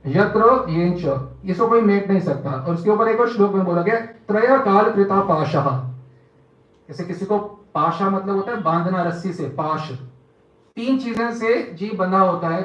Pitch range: 140-200 Hz